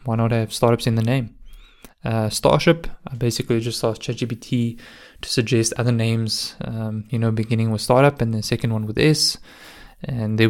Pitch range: 115-130 Hz